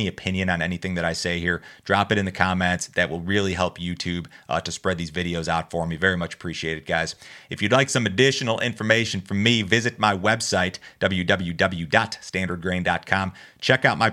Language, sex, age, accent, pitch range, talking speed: English, male, 30-49, American, 85-105 Hz, 190 wpm